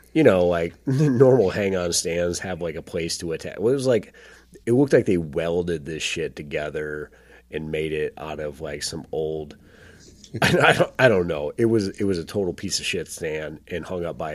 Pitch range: 75-90 Hz